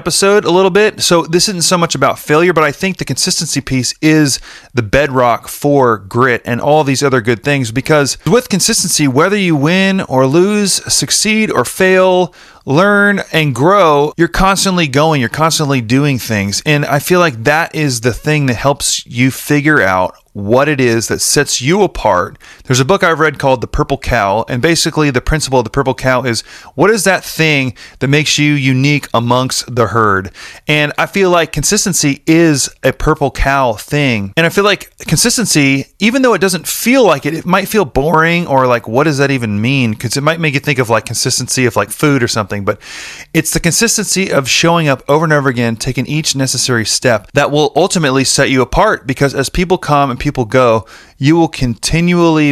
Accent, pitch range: American, 125-160 Hz